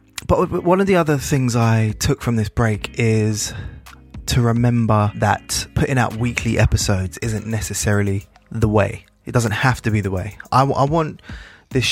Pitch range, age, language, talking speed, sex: 105-120 Hz, 20-39, English, 170 wpm, male